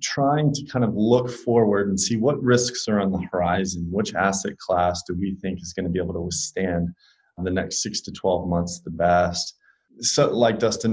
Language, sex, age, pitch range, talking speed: English, male, 30-49, 90-115 Hz, 210 wpm